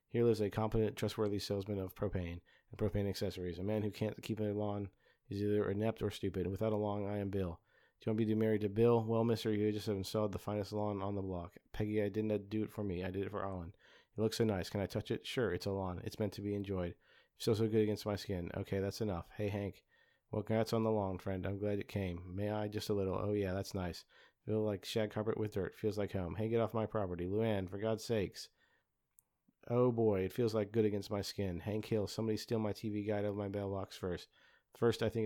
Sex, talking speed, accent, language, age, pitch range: male, 260 wpm, American, English, 40-59, 100-110 Hz